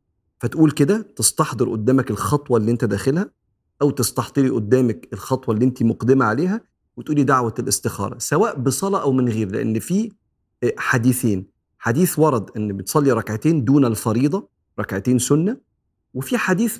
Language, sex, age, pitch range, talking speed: Arabic, male, 40-59, 110-140 Hz, 135 wpm